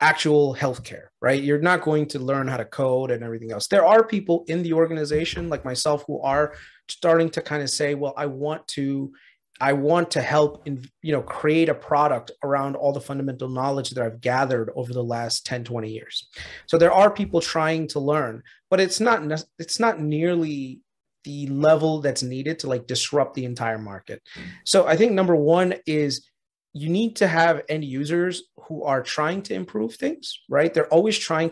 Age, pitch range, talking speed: 30-49, 140-170 Hz, 195 wpm